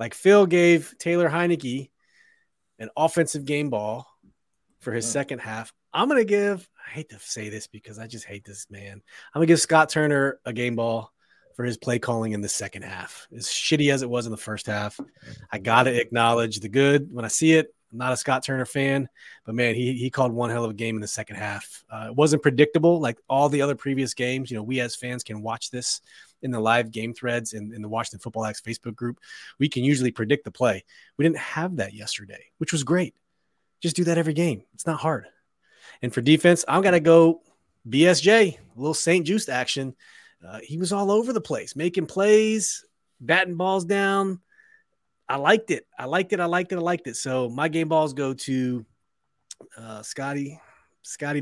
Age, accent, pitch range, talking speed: 30-49, American, 115-165 Hz, 215 wpm